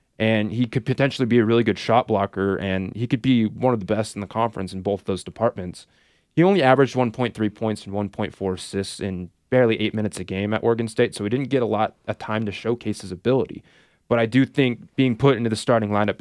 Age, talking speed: 20-39, 240 wpm